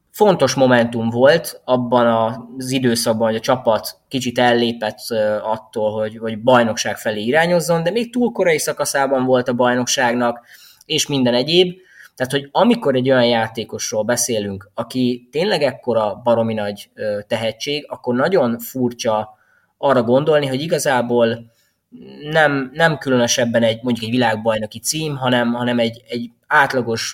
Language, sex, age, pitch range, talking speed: Hungarian, male, 20-39, 110-135 Hz, 135 wpm